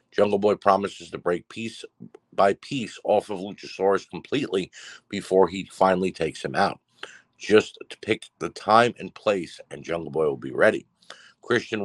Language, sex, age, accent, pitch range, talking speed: English, male, 50-69, American, 95-115 Hz, 160 wpm